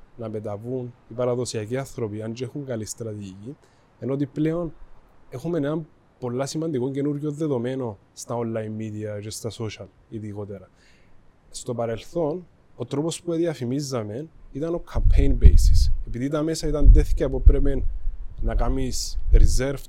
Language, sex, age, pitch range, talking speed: Greek, male, 20-39, 95-135 Hz, 140 wpm